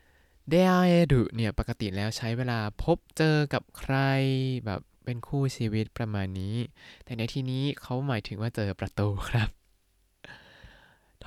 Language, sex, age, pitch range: Thai, male, 20-39, 105-140 Hz